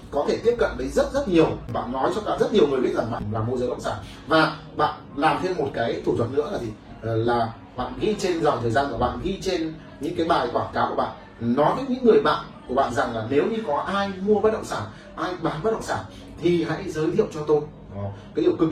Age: 30-49